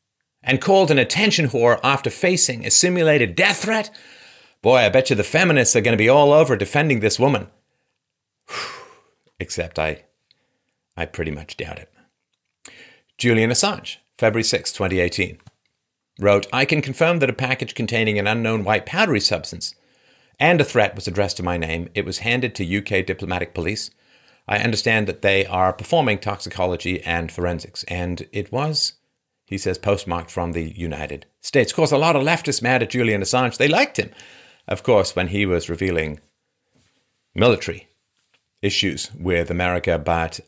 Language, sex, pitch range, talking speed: English, male, 90-130 Hz, 160 wpm